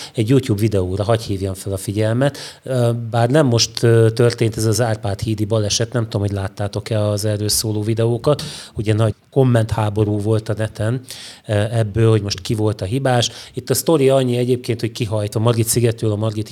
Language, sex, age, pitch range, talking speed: Hungarian, male, 30-49, 105-130 Hz, 180 wpm